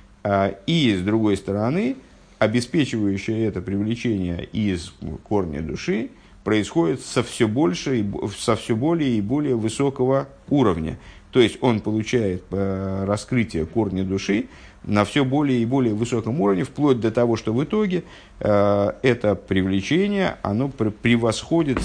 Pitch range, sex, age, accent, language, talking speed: 95-125 Hz, male, 50-69, native, Russian, 115 wpm